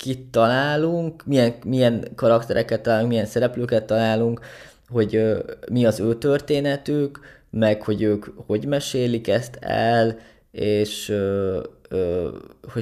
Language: Hungarian